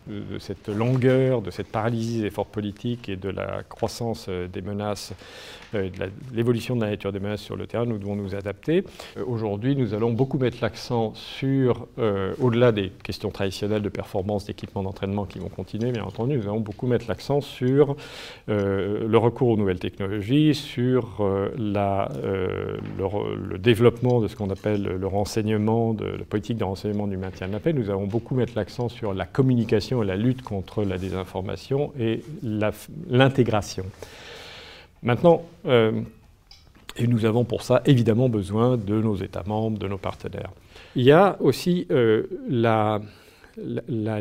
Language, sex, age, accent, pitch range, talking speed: French, male, 50-69, French, 100-125 Hz, 170 wpm